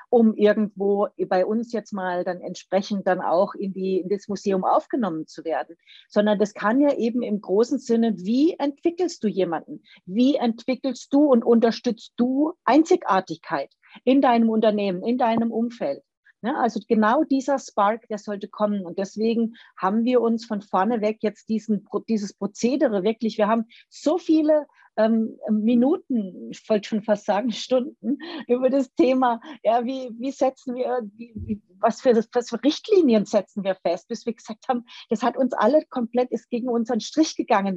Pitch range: 205-255 Hz